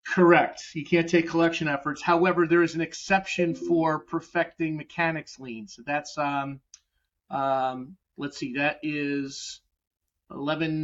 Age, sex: 40-59, male